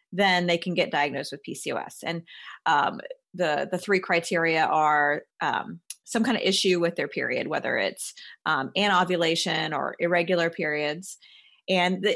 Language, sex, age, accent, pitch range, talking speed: English, female, 30-49, American, 165-205 Hz, 160 wpm